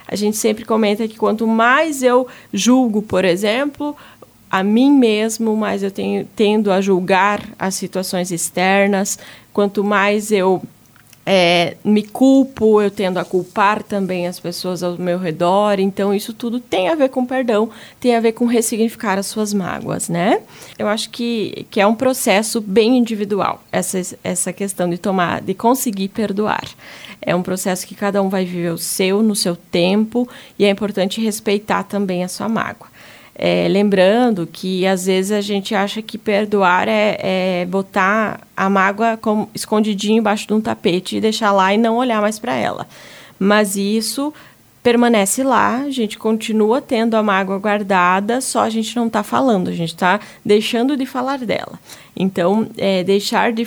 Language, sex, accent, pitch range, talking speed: Portuguese, female, Brazilian, 190-225 Hz, 165 wpm